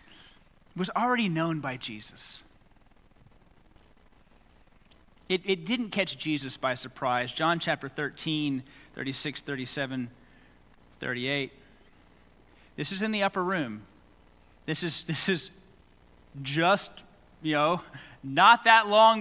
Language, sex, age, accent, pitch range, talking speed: English, male, 30-49, American, 140-225 Hz, 105 wpm